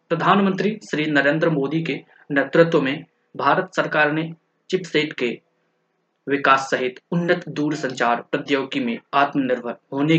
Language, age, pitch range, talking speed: Hindi, 20-39, 135-165 Hz, 120 wpm